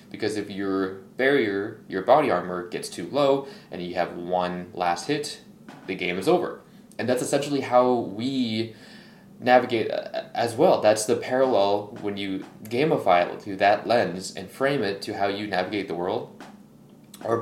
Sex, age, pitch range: male, 20-39, 100-130 Hz